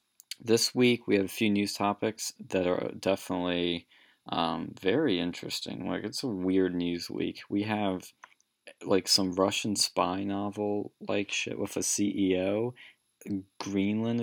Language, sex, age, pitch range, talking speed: English, male, 20-39, 90-105 Hz, 140 wpm